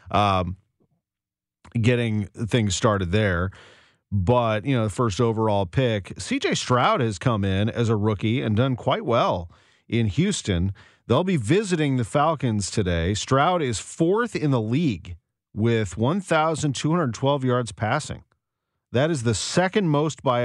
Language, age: English, 40-59